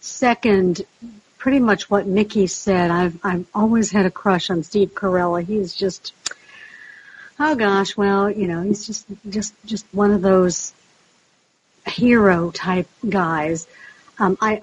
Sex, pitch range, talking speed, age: female, 195-235 Hz, 140 wpm, 60-79